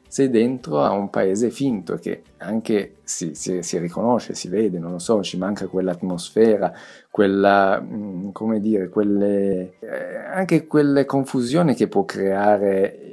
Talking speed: 140 wpm